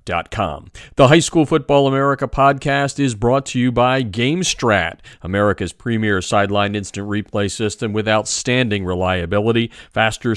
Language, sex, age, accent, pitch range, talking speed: English, male, 40-59, American, 90-125 Hz, 135 wpm